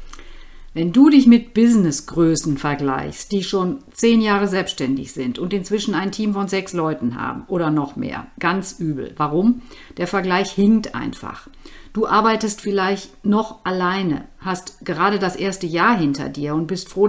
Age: 50-69